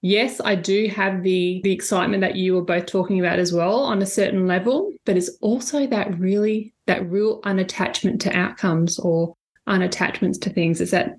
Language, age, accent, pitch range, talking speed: English, 20-39, Australian, 170-200 Hz, 190 wpm